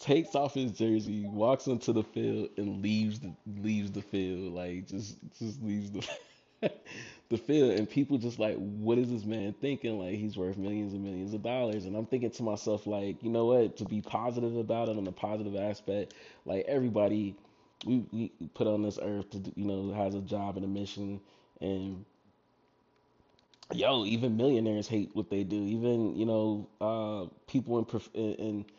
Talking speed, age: 185 wpm, 20-39